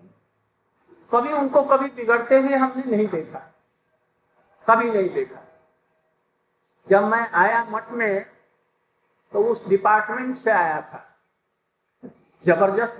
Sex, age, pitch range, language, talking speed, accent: male, 50-69, 195-235 Hz, Hindi, 105 wpm, native